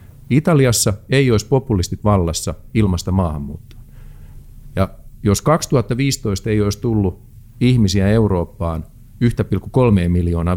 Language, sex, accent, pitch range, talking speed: Finnish, male, native, 95-125 Hz, 95 wpm